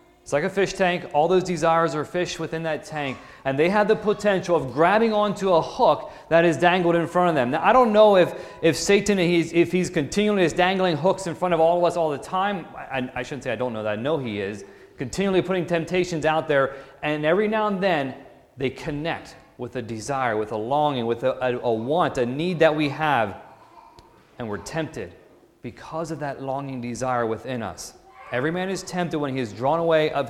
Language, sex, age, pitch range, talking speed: English, male, 30-49, 130-175 Hz, 220 wpm